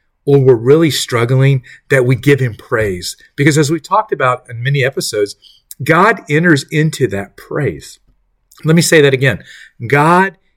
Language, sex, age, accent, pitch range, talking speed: English, male, 40-59, American, 110-140 Hz, 160 wpm